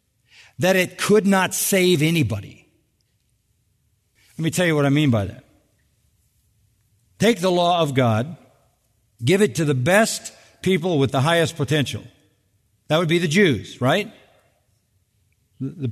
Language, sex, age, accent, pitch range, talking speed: English, male, 50-69, American, 120-190 Hz, 140 wpm